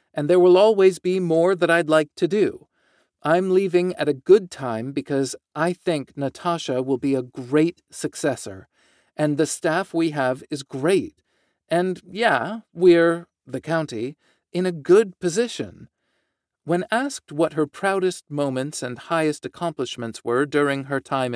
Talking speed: 150 wpm